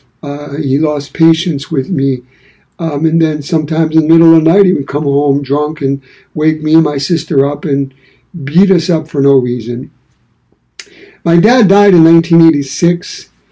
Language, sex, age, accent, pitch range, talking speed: English, male, 60-79, American, 140-165 Hz, 180 wpm